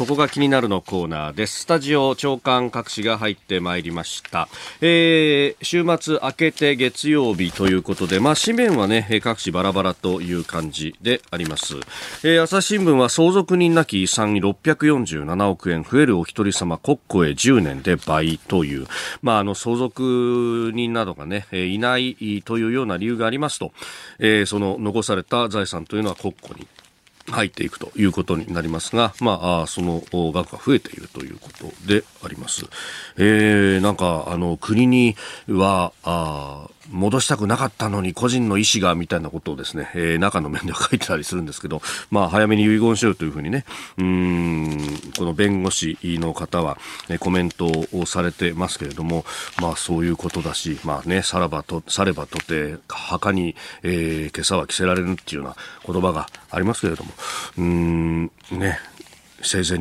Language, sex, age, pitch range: Japanese, male, 40-59, 85-115 Hz